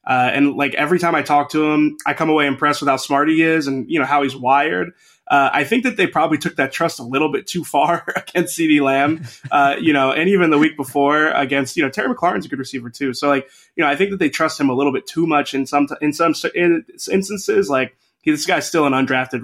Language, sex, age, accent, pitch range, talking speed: English, male, 20-39, American, 135-160 Hz, 260 wpm